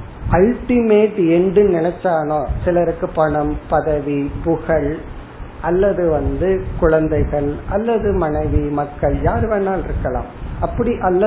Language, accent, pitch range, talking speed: Tamil, native, 150-200 Hz, 80 wpm